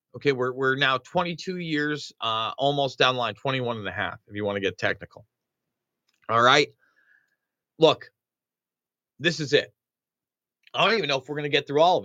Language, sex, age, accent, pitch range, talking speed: English, male, 30-49, American, 135-175 Hz, 195 wpm